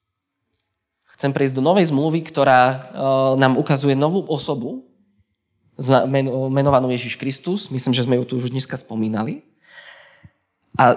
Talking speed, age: 120 wpm, 20-39